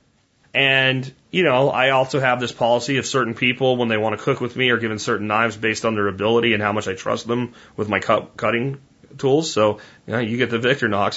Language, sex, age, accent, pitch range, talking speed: English, male, 30-49, American, 110-135 Hz, 235 wpm